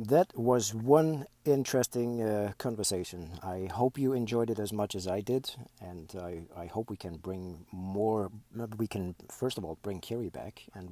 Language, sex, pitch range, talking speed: English, male, 95-120 Hz, 180 wpm